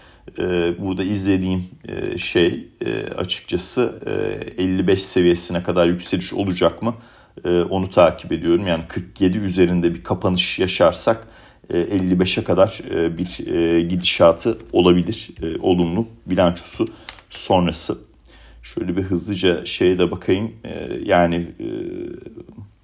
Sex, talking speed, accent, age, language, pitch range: male, 90 wpm, native, 40-59, Turkish, 85-95 Hz